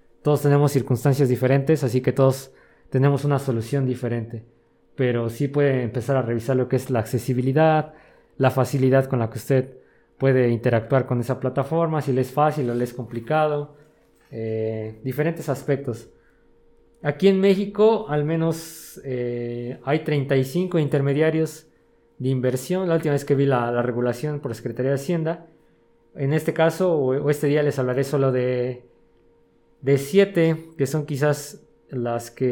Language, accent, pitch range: Spanish, Mexican, 125-155 Hz